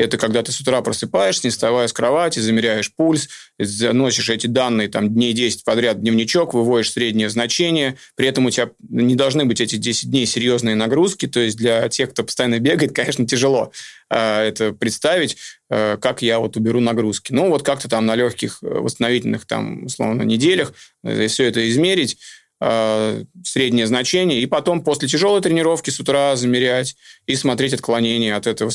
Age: 20-39